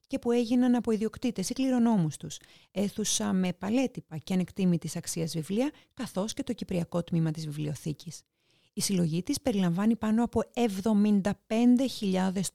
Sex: female